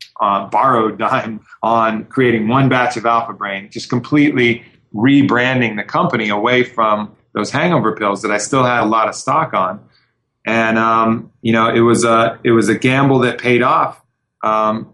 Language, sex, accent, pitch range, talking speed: English, male, American, 105-125 Hz, 175 wpm